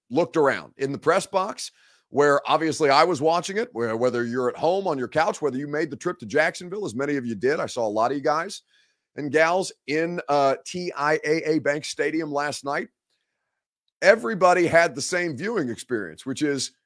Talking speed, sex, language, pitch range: 200 wpm, male, English, 145-200 Hz